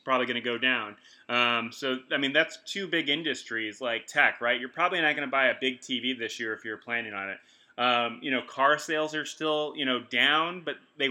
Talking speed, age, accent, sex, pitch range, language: 240 wpm, 20-39, American, male, 125-155 Hz, English